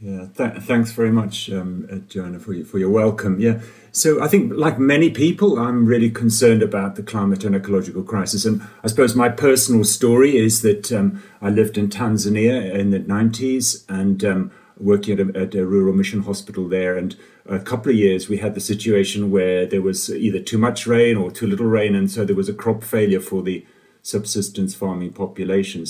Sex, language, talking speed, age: male, English, 195 wpm, 40-59